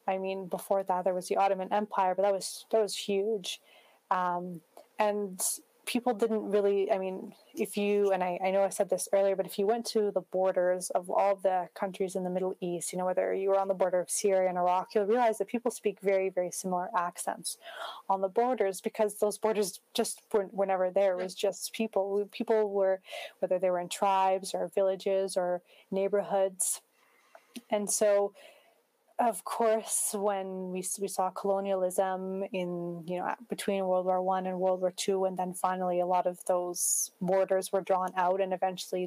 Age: 20-39